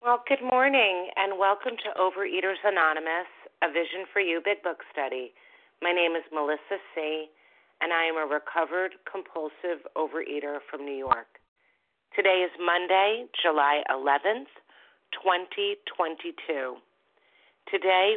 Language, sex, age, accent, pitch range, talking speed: English, female, 40-59, American, 150-205 Hz, 120 wpm